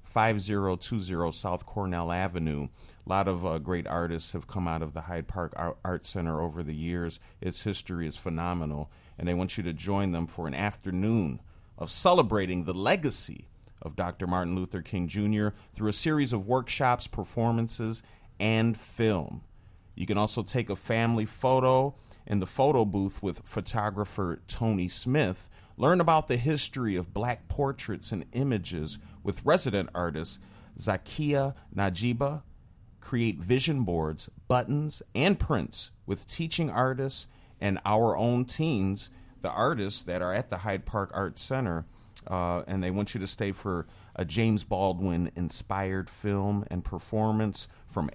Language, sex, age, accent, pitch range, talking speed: English, male, 40-59, American, 90-115 Hz, 150 wpm